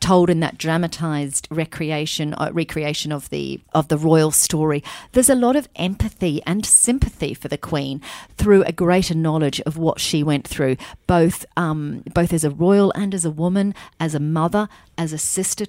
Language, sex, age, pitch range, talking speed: English, female, 40-59, 145-180 Hz, 185 wpm